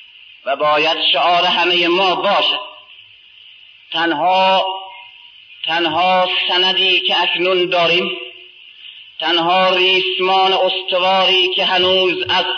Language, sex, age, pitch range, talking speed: Persian, male, 30-49, 180-290 Hz, 85 wpm